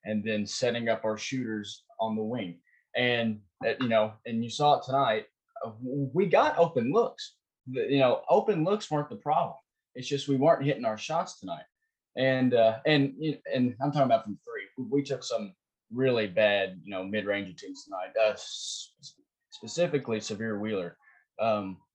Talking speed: 170 wpm